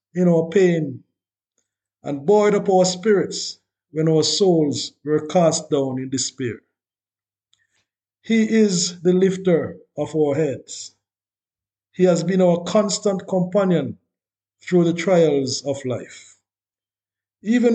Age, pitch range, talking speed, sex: 50-69, 110-180 Hz, 120 wpm, male